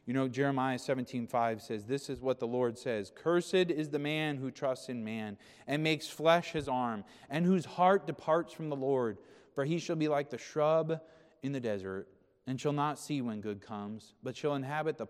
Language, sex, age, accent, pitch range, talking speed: English, male, 30-49, American, 130-205 Hz, 210 wpm